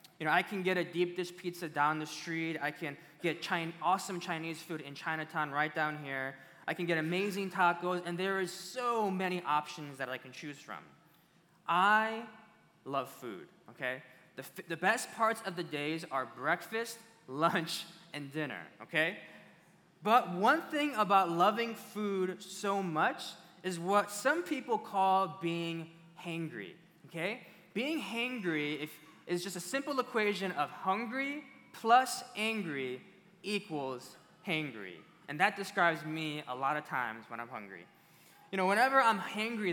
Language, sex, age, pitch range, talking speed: English, male, 20-39, 165-215 Hz, 155 wpm